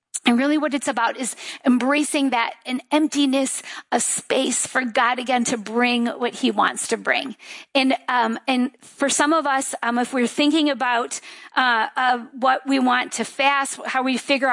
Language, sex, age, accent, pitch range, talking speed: English, female, 40-59, American, 245-285 Hz, 180 wpm